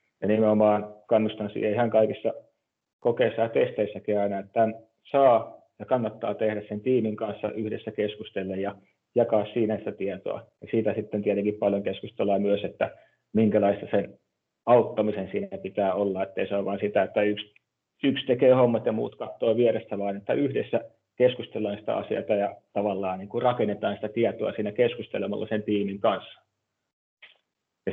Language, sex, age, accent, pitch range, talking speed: Finnish, male, 30-49, native, 100-110 Hz, 155 wpm